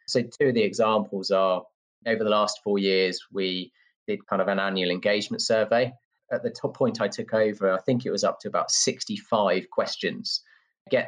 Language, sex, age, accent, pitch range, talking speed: English, male, 30-49, British, 95-110 Hz, 195 wpm